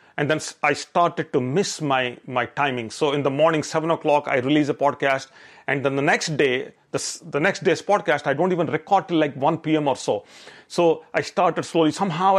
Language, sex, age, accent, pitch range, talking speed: English, male, 40-59, Indian, 140-180 Hz, 215 wpm